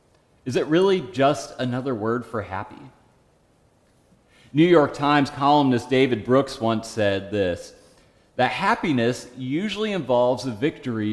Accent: American